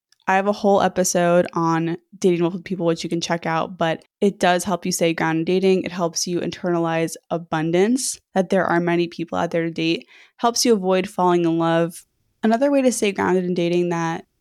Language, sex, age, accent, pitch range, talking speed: English, female, 20-39, American, 165-195 Hz, 210 wpm